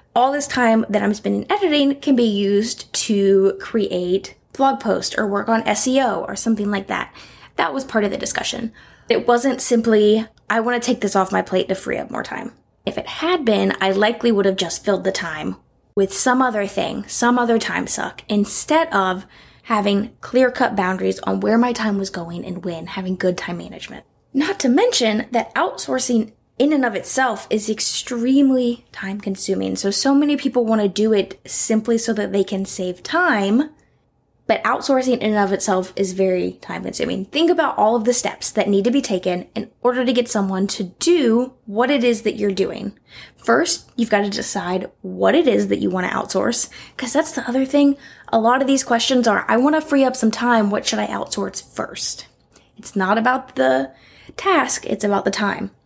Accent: American